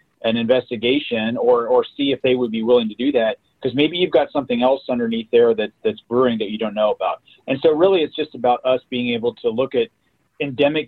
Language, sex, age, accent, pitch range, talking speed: English, male, 40-59, American, 120-155 Hz, 230 wpm